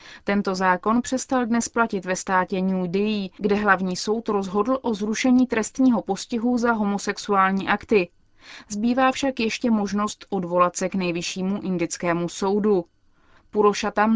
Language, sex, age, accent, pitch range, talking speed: Czech, female, 20-39, native, 190-235 Hz, 130 wpm